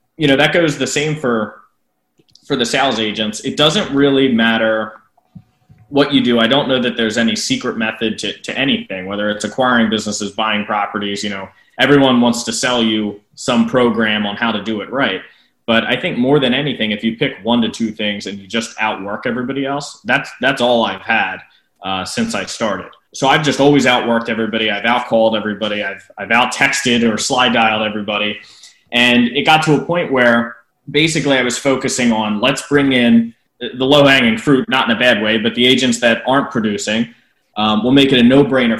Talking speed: 205 wpm